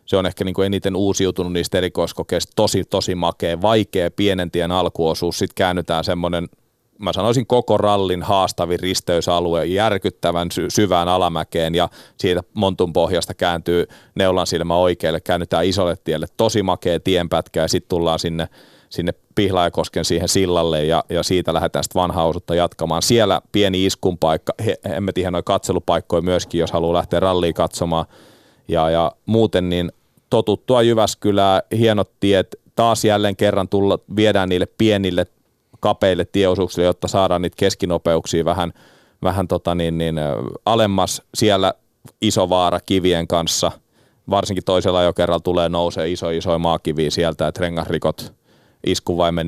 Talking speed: 135 wpm